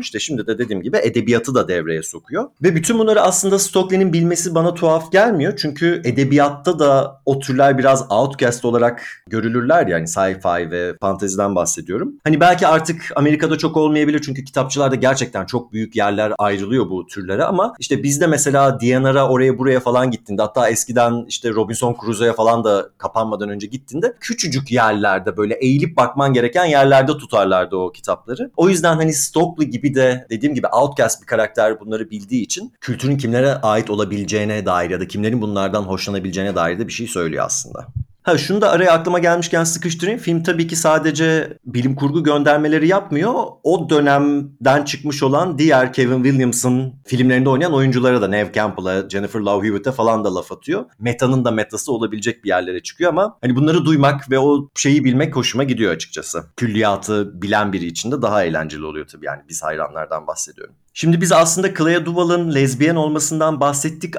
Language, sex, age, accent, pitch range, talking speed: Turkish, male, 40-59, native, 110-155 Hz, 170 wpm